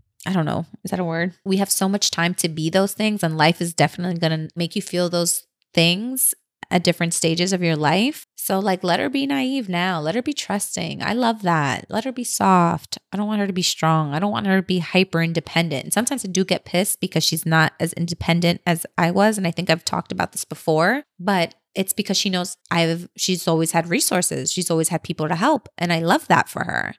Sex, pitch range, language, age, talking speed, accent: female, 165-195 Hz, English, 20-39, 245 wpm, American